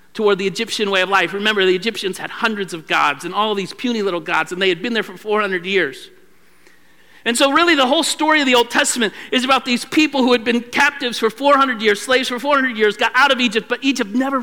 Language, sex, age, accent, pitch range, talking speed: English, male, 50-69, American, 200-250 Hz, 245 wpm